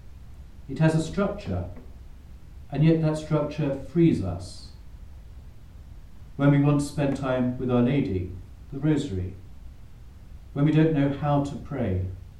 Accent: British